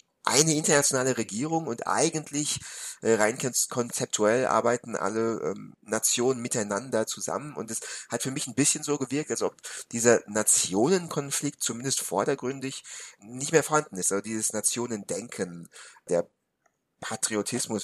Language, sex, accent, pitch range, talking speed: German, male, German, 115-150 Hz, 130 wpm